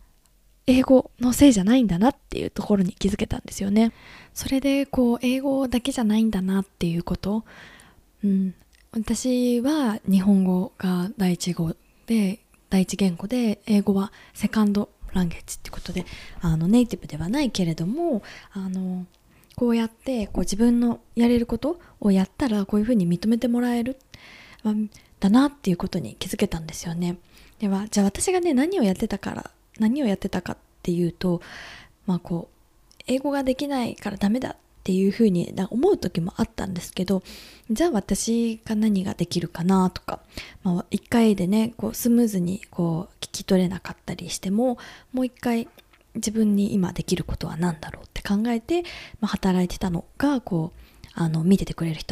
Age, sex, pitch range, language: 20-39, female, 185-235 Hz, Japanese